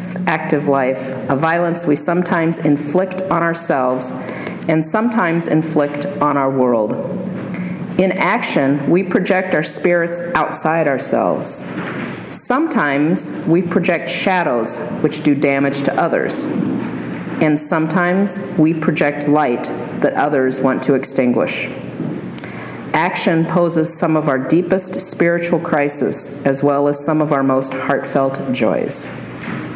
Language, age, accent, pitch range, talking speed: English, 50-69, American, 145-185 Hz, 120 wpm